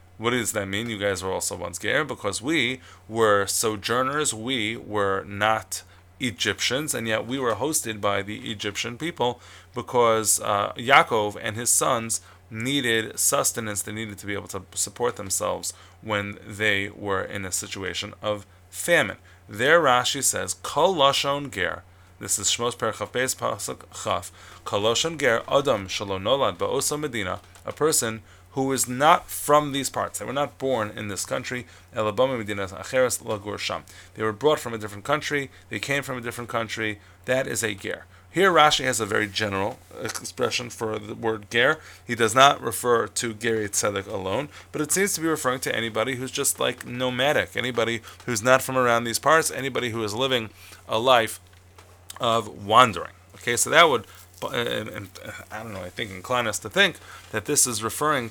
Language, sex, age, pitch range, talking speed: English, male, 20-39, 100-125 Hz, 165 wpm